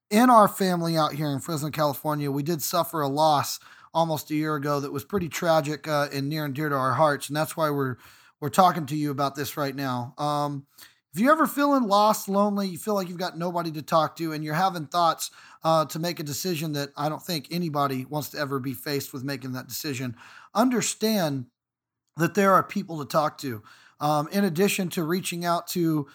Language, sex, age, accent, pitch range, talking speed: English, male, 40-59, American, 145-170 Hz, 220 wpm